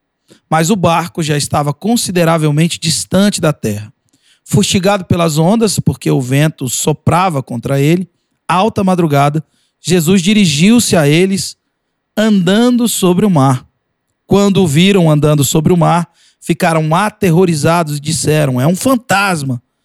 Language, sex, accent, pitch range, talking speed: Portuguese, male, Brazilian, 145-190 Hz, 125 wpm